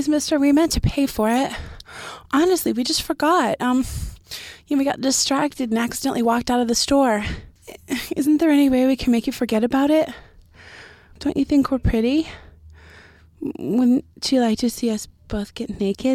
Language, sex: English, female